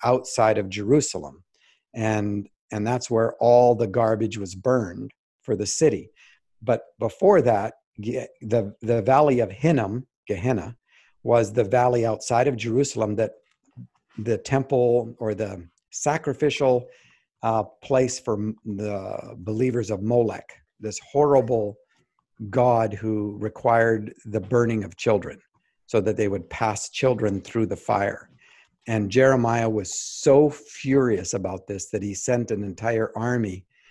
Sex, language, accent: male, English, American